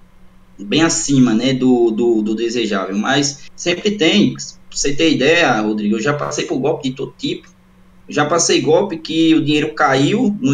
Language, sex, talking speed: Portuguese, male, 175 wpm